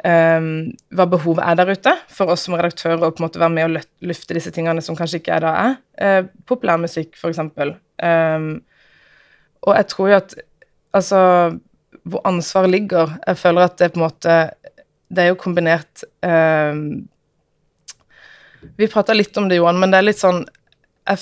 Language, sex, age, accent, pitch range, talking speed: English, female, 20-39, Swedish, 165-195 Hz, 185 wpm